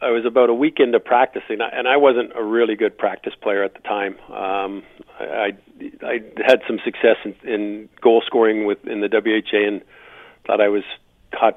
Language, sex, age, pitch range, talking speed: English, male, 50-69, 100-115 Hz, 185 wpm